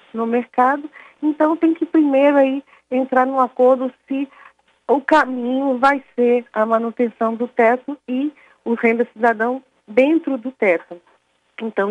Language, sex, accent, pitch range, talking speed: Portuguese, female, Brazilian, 220-265 Hz, 135 wpm